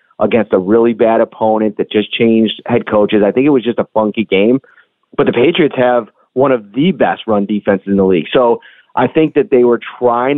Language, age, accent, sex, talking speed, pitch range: English, 30-49, American, male, 220 wpm, 110-135 Hz